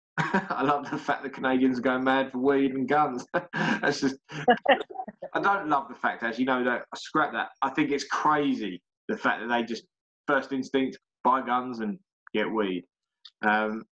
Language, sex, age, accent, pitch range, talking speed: English, male, 20-39, British, 115-140 Hz, 185 wpm